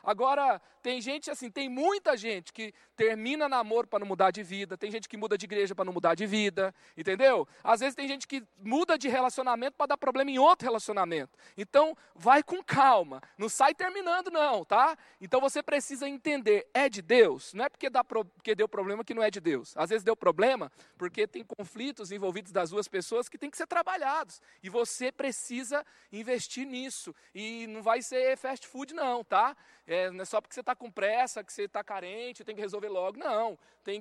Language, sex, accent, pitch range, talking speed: Portuguese, male, Brazilian, 195-270 Hz, 210 wpm